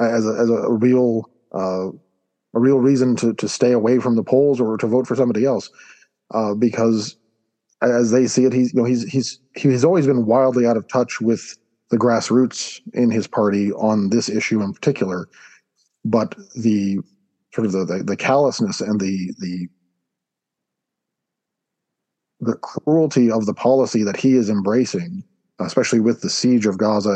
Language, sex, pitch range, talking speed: English, male, 105-130 Hz, 170 wpm